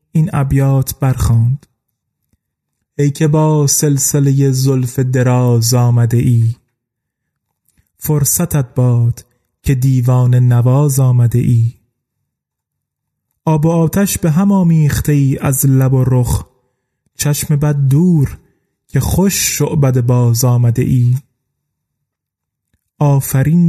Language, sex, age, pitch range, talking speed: Persian, male, 30-49, 125-155 Hz, 100 wpm